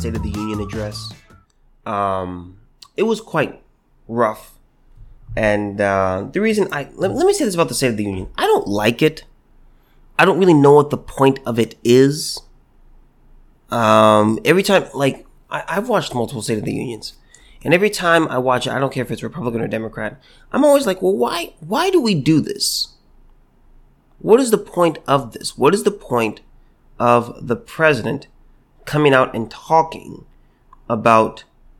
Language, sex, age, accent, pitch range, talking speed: English, male, 30-49, American, 115-155 Hz, 175 wpm